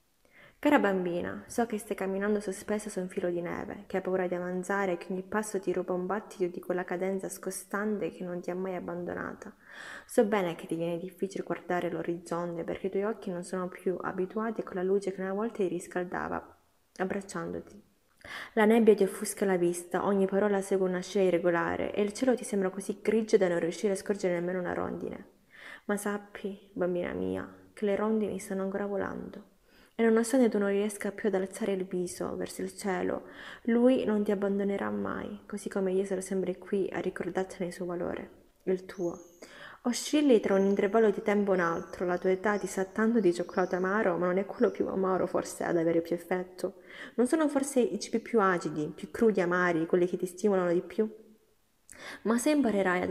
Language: Italian